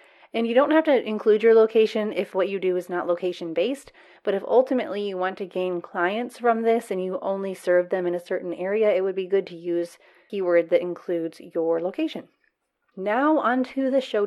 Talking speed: 215 wpm